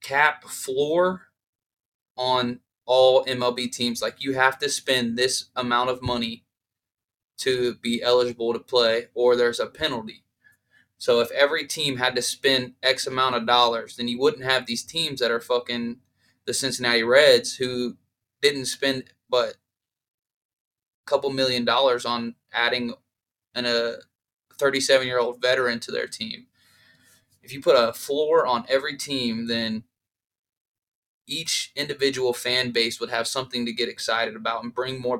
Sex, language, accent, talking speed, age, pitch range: male, English, American, 150 wpm, 20-39, 115-135 Hz